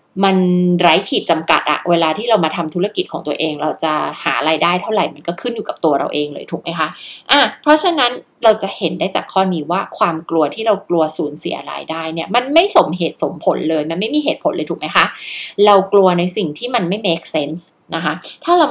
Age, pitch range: 20-39, 165-245 Hz